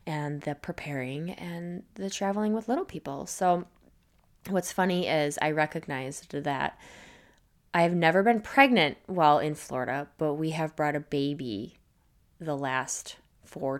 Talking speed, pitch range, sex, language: 140 wpm, 145-195 Hz, female, English